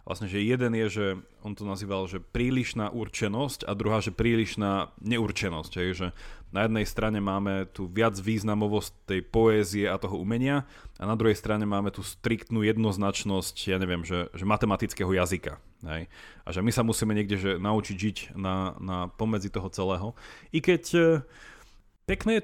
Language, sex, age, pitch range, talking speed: Slovak, male, 30-49, 95-115 Hz, 170 wpm